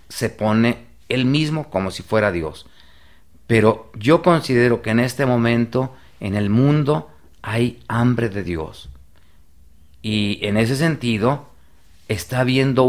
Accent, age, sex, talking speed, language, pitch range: Mexican, 40-59, male, 130 wpm, Spanish, 85-125 Hz